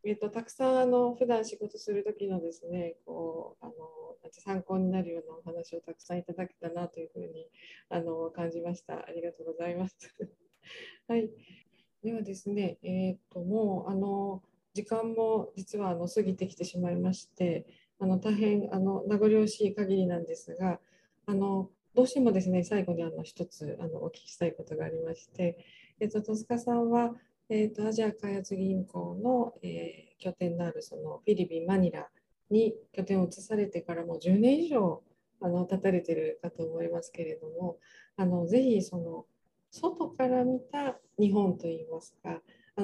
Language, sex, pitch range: Japanese, female, 170-220 Hz